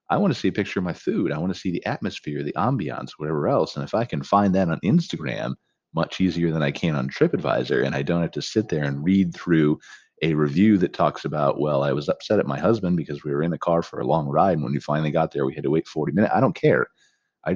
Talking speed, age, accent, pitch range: 280 wpm, 40-59, American, 70-90 Hz